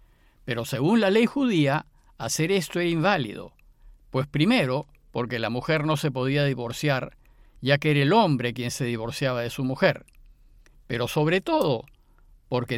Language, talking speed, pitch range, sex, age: Spanish, 155 wpm, 130-180 Hz, male, 50-69